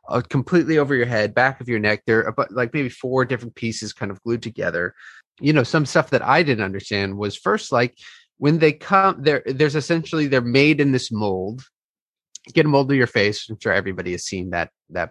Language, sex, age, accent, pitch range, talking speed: English, male, 30-49, American, 105-140 Hz, 220 wpm